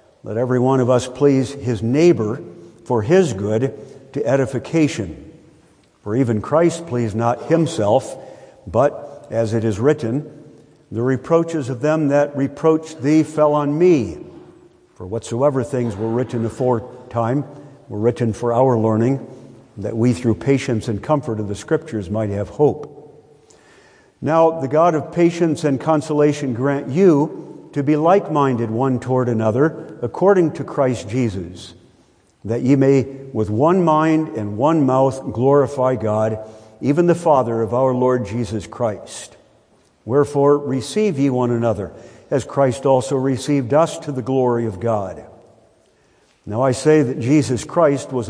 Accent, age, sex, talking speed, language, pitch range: American, 50-69, male, 145 wpm, English, 115-150 Hz